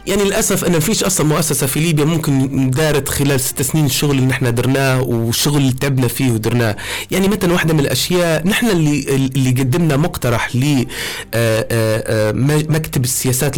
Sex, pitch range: male, 130-165 Hz